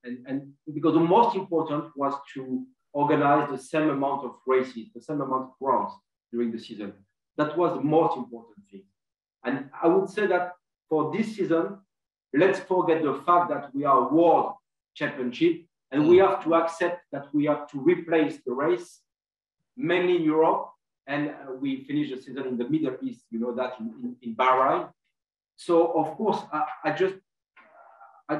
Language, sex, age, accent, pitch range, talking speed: English, male, 40-59, French, 135-165 Hz, 175 wpm